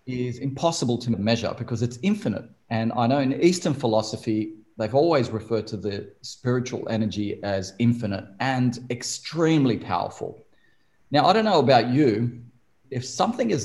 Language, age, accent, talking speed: English, 40-59, Australian, 150 wpm